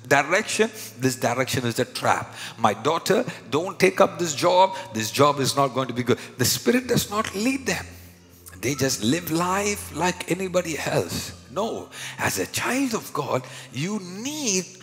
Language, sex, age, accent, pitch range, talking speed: English, male, 50-69, Indian, 115-180 Hz, 170 wpm